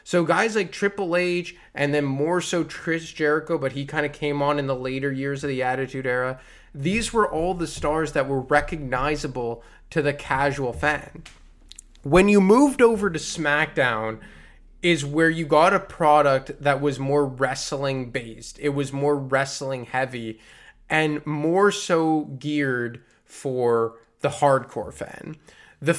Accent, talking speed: American, 155 wpm